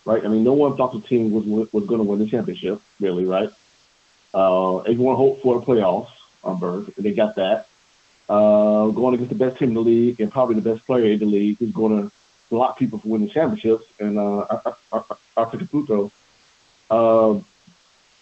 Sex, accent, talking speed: male, American, 190 wpm